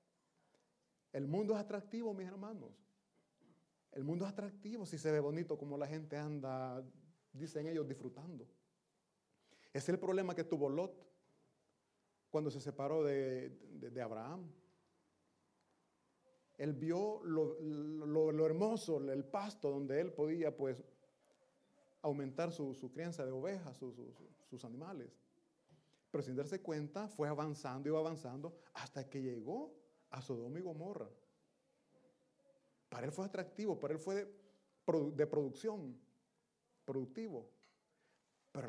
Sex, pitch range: male, 140-190 Hz